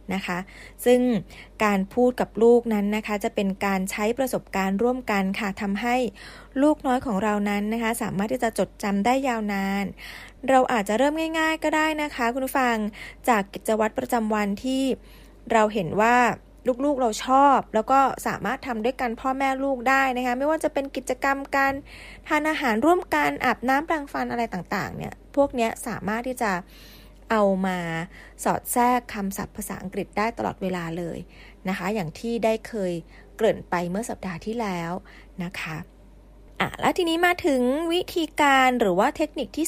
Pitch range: 200-265 Hz